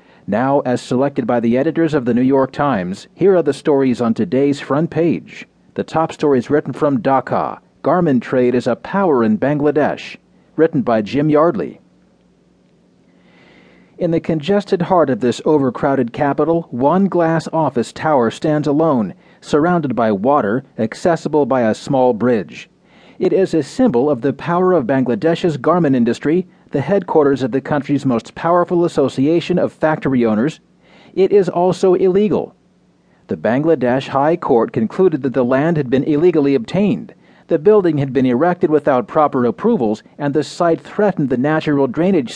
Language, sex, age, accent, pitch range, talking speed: English, male, 40-59, American, 135-175 Hz, 155 wpm